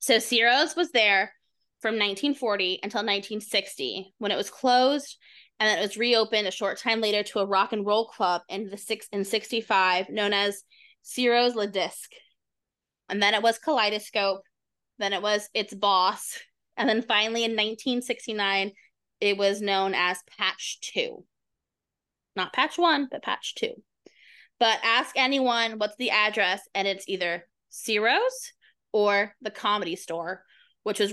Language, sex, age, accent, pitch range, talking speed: English, female, 20-39, American, 195-230 Hz, 150 wpm